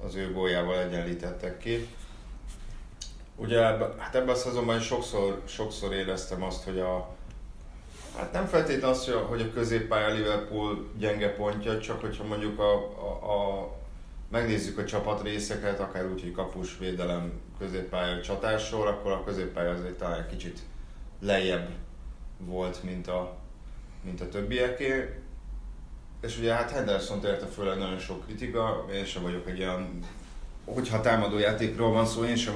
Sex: male